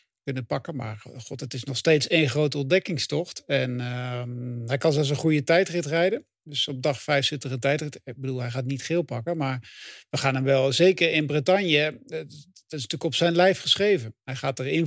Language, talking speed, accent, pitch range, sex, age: English, 215 wpm, Dutch, 135-165 Hz, male, 50-69